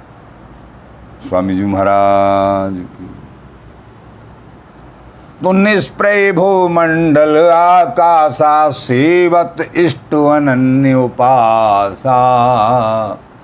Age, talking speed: 50-69, 55 wpm